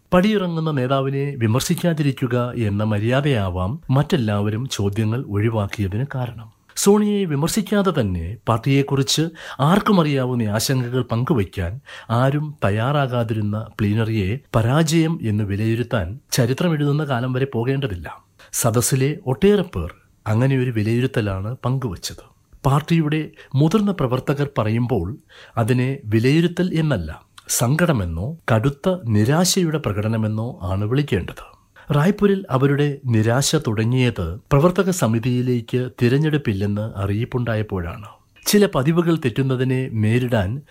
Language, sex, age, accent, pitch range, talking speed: Malayalam, male, 60-79, native, 110-150 Hz, 85 wpm